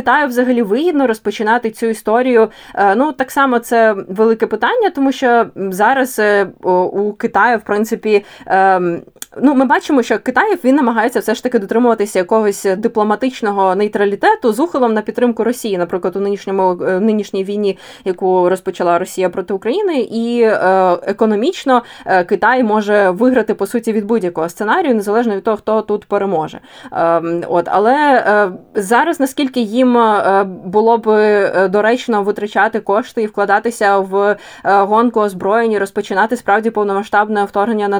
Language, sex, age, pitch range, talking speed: Ukrainian, female, 20-39, 195-235 Hz, 135 wpm